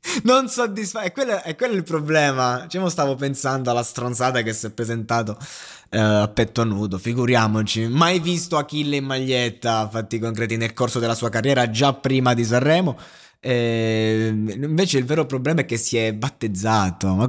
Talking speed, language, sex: 170 wpm, Italian, male